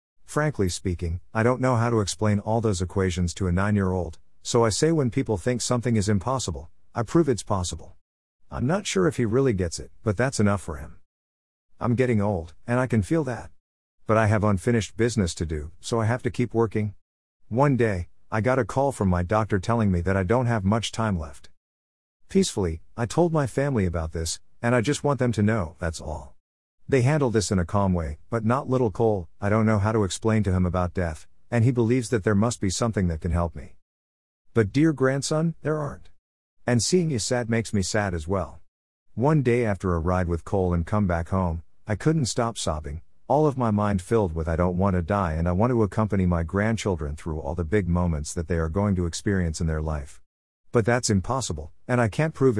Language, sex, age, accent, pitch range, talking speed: English, male, 50-69, American, 85-120 Hz, 225 wpm